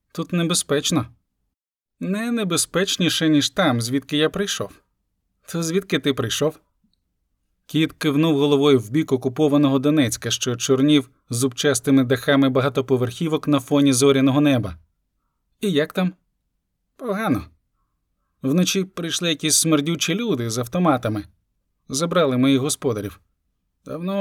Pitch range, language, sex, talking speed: 125-165 Hz, Ukrainian, male, 110 wpm